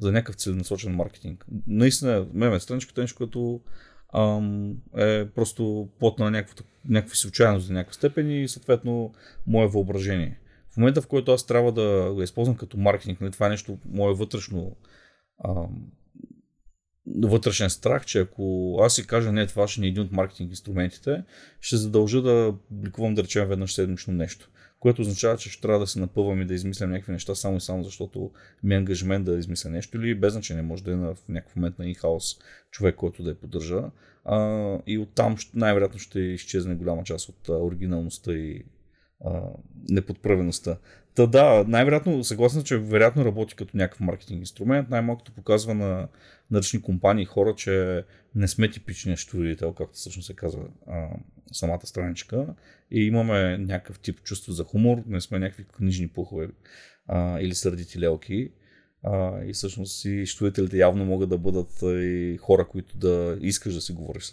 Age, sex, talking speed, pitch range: 30-49, male, 165 wpm, 90-110 Hz